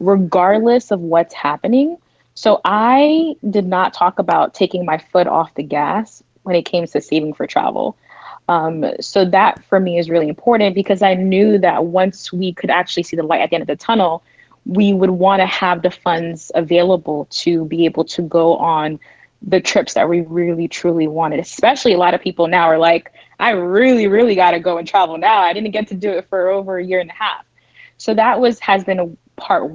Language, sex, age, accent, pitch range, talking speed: English, female, 20-39, American, 170-215 Hz, 215 wpm